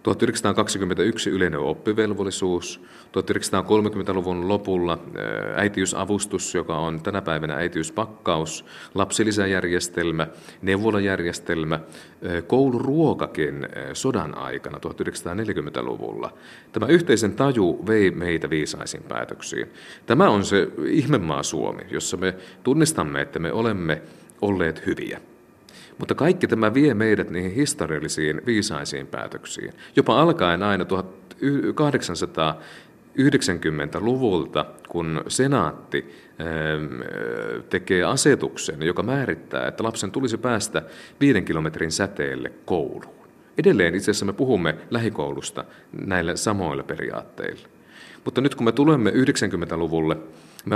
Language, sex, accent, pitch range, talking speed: Finnish, male, native, 85-110 Hz, 95 wpm